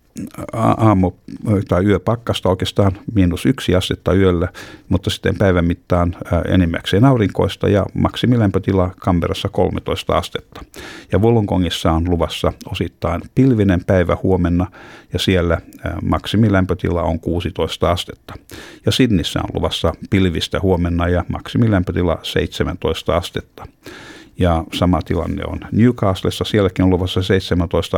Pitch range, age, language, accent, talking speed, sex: 85-100 Hz, 50-69, Finnish, native, 110 wpm, male